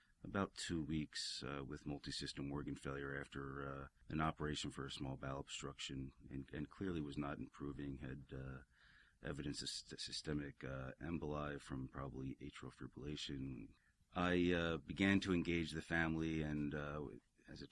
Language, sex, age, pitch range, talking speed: English, male, 40-59, 70-85 Hz, 160 wpm